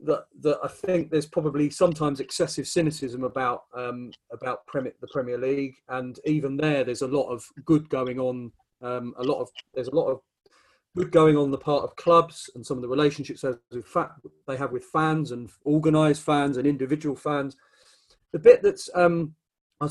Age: 30-49